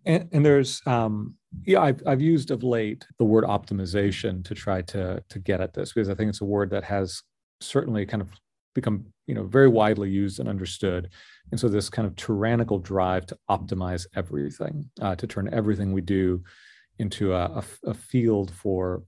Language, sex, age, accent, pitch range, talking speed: English, male, 40-59, American, 95-115 Hz, 195 wpm